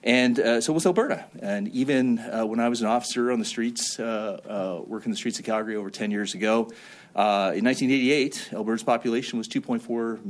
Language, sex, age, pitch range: English, male, 40-59, 115-195 Hz